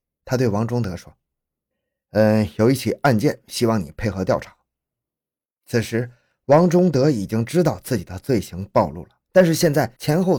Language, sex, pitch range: Chinese, male, 105-145 Hz